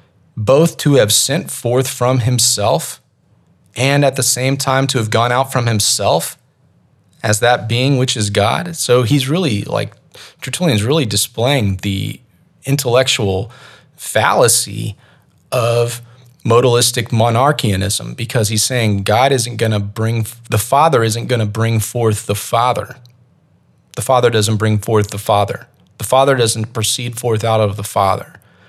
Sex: male